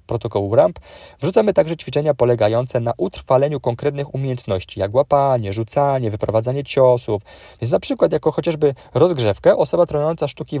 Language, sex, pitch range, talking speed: Polish, male, 110-150 Hz, 135 wpm